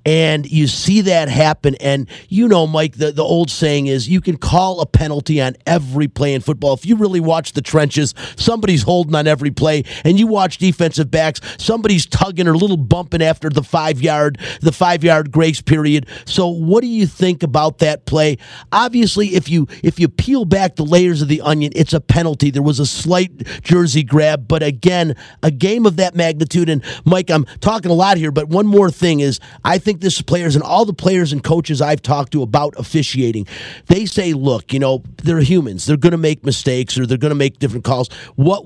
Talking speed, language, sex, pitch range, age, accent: 210 wpm, English, male, 145-180 Hz, 40-59, American